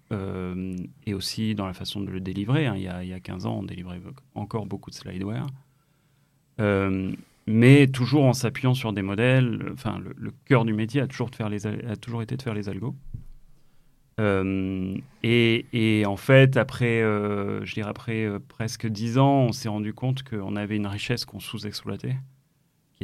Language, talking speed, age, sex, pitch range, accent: French, 195 wpm, 30-49, male, 100-135 Hz, French